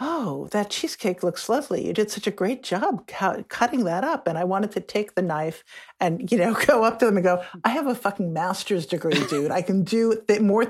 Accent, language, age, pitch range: American, English, 50-69, 175-225 Hz